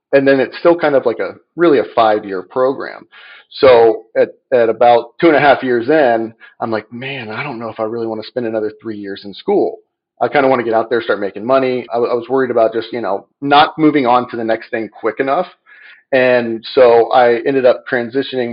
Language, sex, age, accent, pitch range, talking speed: English, male, 40-59, American, 115-145 Hz, 235 wpm